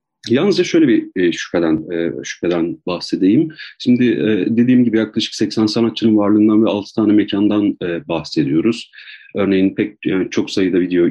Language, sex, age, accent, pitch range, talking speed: Turkish, male, 40-59, native, 95-140 Hz, 130 wpm